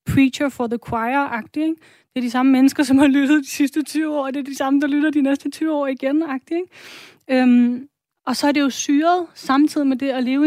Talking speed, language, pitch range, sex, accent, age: 240 wpm, Danish, 245-280 Hz, female, native, 30-49